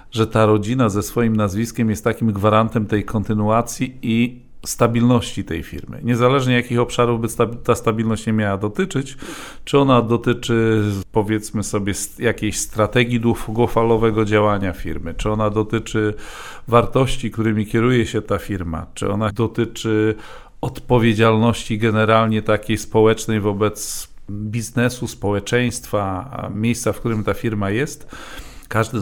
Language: Polish